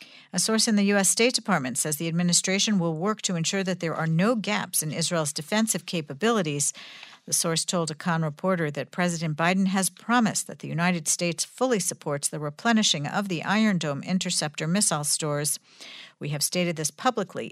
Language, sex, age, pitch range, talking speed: English, female, 50-69, 155-195 Hz, 185 wpm